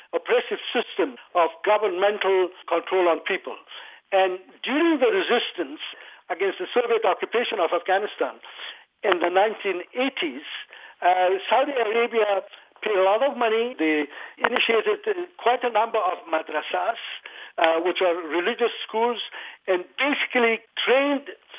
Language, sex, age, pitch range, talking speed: English, male, 60-79, 185-260 Hz, 120 wpm